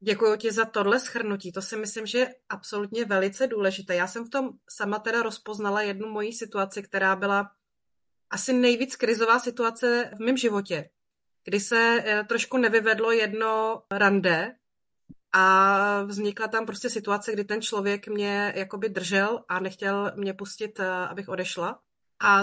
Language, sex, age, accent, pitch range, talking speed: Czech, female, 30-49, native, 200-225 Hz, 150 wpm